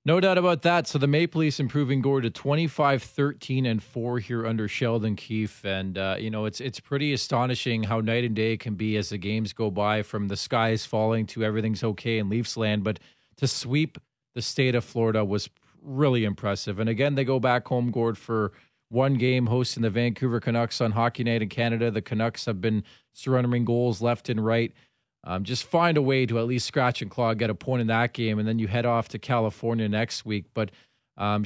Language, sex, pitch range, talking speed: English, male, 110-135 Hz, 215 wpm